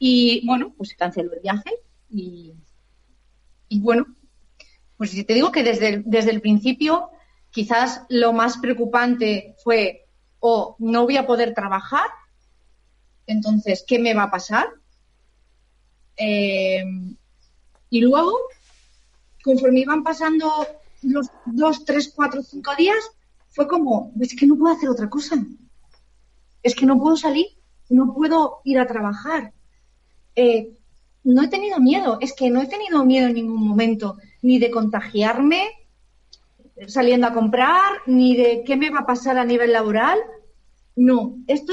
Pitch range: 220-275 Hz